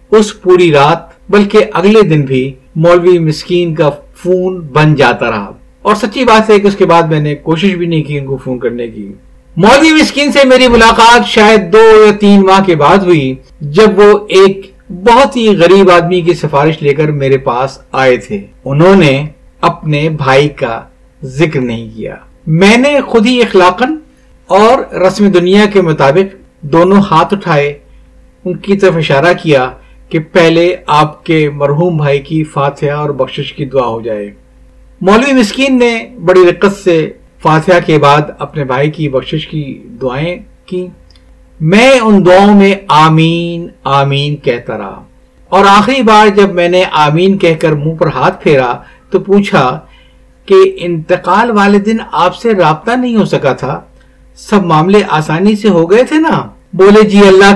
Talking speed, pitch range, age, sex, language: 170 wpm, 150-205 Hz, 50-69, male, Urdu